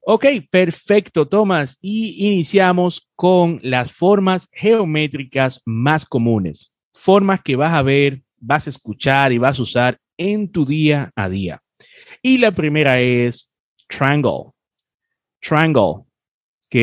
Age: 30-49